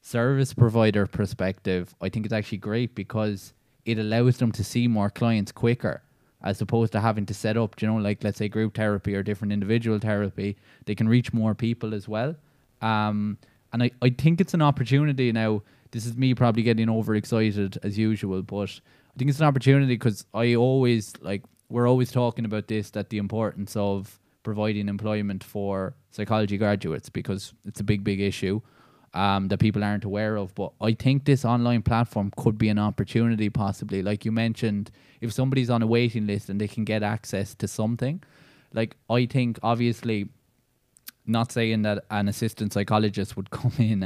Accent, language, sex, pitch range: Irish, English, male, 105-120 Hz